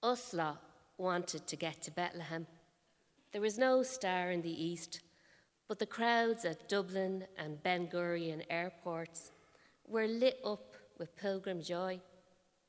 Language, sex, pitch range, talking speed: English, female, 170-210 Hz, 130 wpm